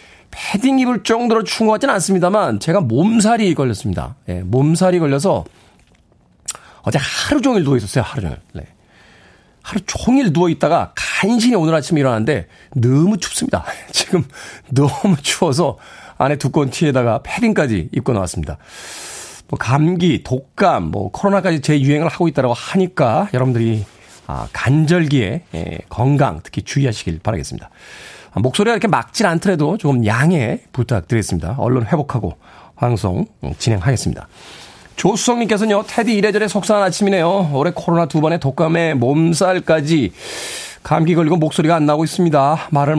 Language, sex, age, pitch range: Korean, male, 40-59, 125-190 Hz